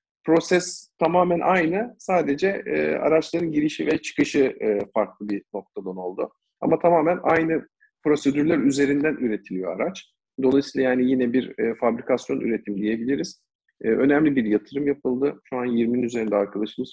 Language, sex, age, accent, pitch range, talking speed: Turkish, male, 50-69, native, 110-145 Hz, 140 wpm